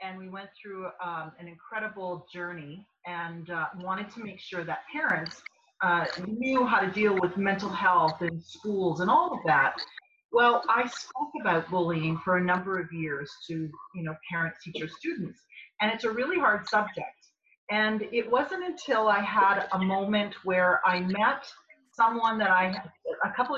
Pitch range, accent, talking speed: 175-210 Hz, American, 175 wpm